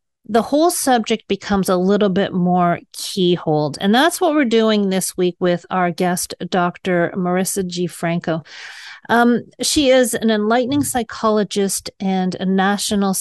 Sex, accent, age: female, American, 40-59